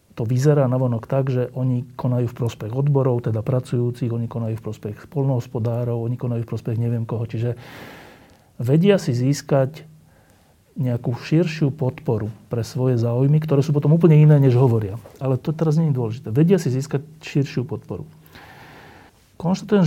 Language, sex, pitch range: Slovak, male, 115-145 Hz